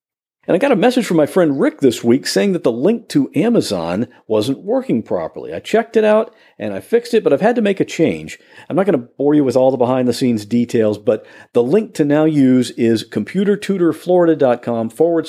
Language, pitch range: English, 130-205 Hz